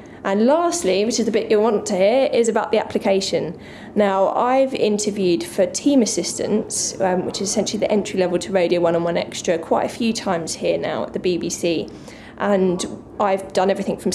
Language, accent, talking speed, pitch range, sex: English, British, 200 wpm, 190-225 Hz, female